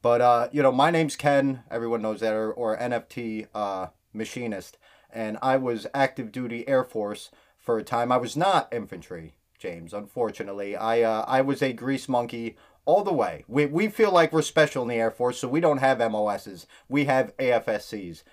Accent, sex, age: American, male, 30-49